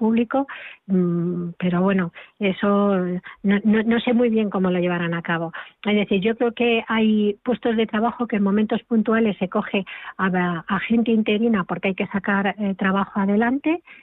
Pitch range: 190-230 Hz